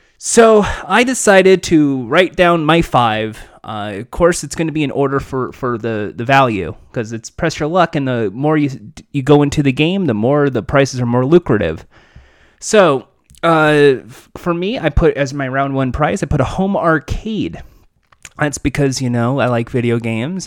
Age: 30-49